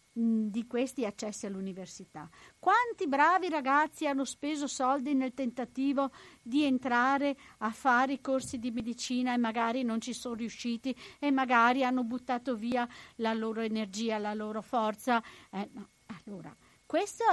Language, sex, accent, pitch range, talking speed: Italian, female, native, 220-290 Hz, 140 wpm